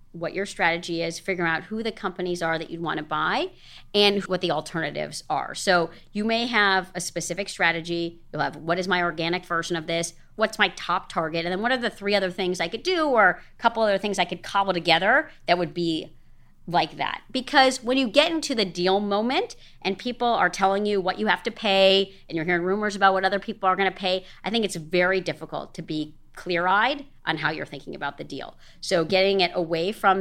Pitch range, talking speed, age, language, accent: 165-200 Hz, 230 wpm, 40-59, English, American